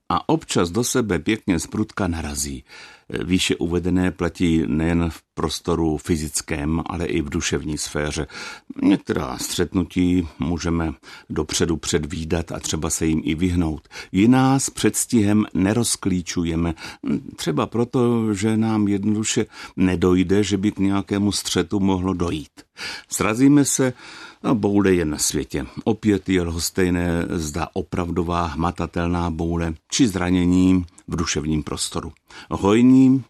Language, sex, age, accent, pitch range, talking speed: Czech, male, 60-79, native, 85-110 Hz, 120 wpm